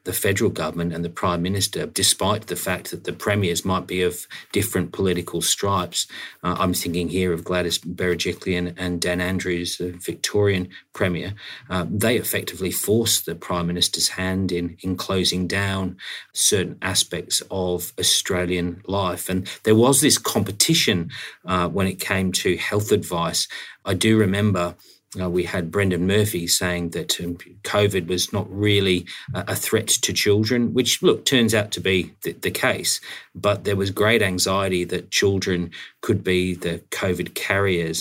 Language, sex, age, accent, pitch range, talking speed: English, male, 40-59, Australian, 90-105 Hz, 155 wpm